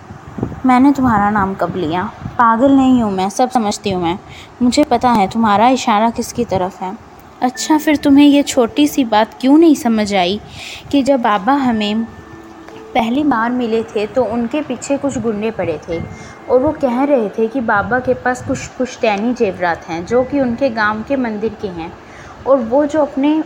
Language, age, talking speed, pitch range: Hindi, 20-39, 185 wpm, 225-280 Hz